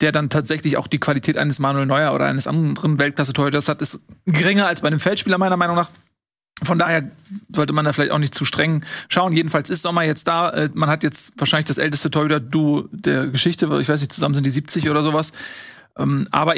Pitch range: 140-160 Hz